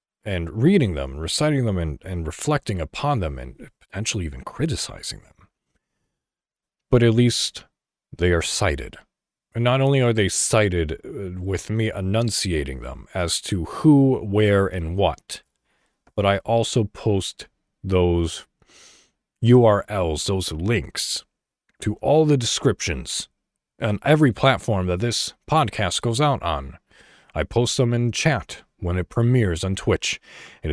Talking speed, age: 135 wpm, 40-59